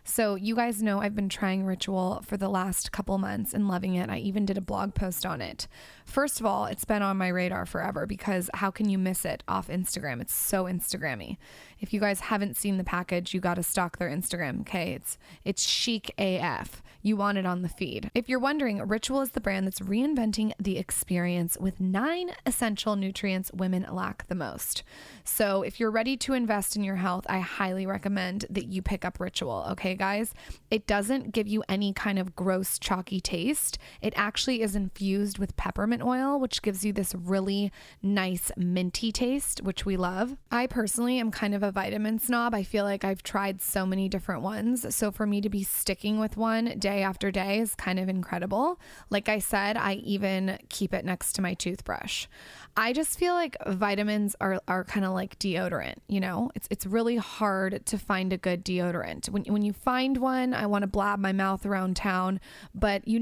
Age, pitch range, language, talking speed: 20-39, 190-215 Hz, English, 200 wpm